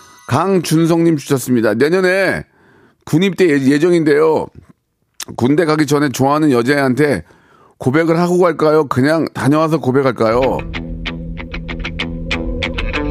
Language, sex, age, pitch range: Korean, male, 40-59, 125-180 Hz